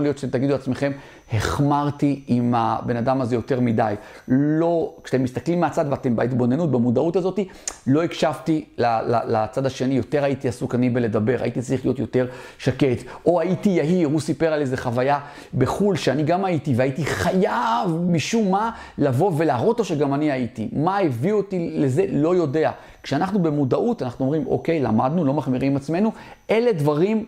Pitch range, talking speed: 130-160 Hz, 155 wpm